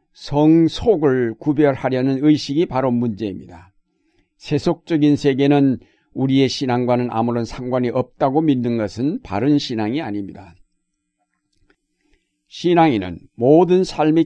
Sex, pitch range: male, 120-150 Hz